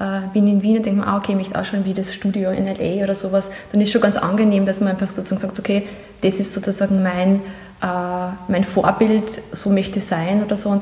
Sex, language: female, German